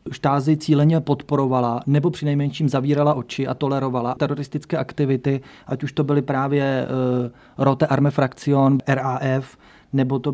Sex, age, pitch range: male, 30-49, 130-145 Hz